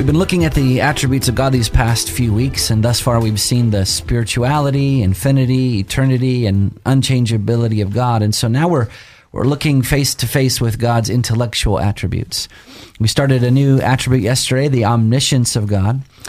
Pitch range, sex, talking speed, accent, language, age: 110-130 Hz, male, 170 wpm, American, English, 30-49